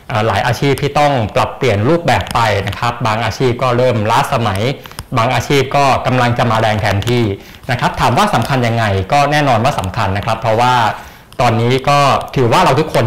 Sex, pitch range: male, 105-135 Hz